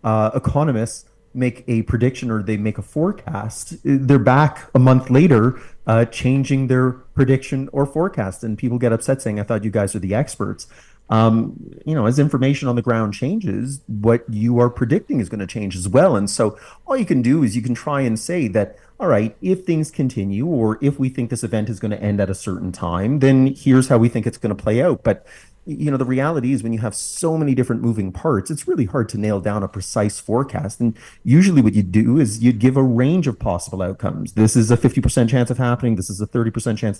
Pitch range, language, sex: 105-130 Hz, English, male